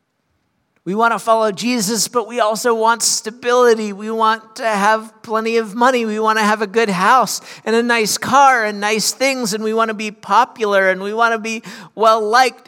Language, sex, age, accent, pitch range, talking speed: English, male, 50-69, American, 185-225 Hz, 205 wpm